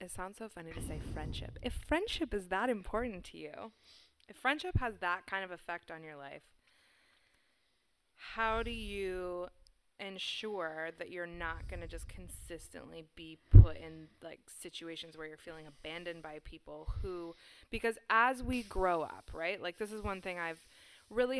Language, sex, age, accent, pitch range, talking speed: English, female, 20-39, American, 165-205 Hz, 170 wpm